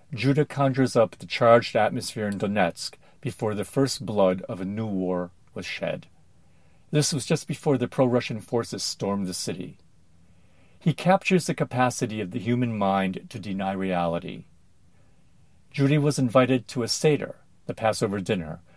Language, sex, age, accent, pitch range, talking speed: English, male, 50-69, American, 95-140 Hz, 155 wpm